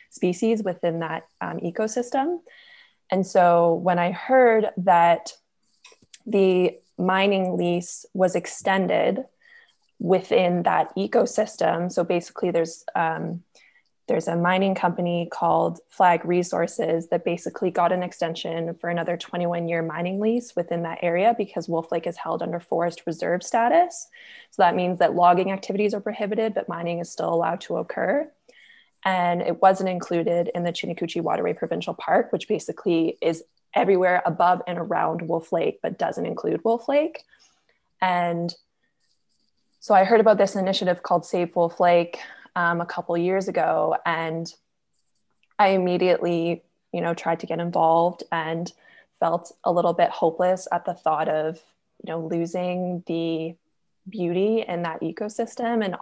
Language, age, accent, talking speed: English, 20-39, American, 145 wpm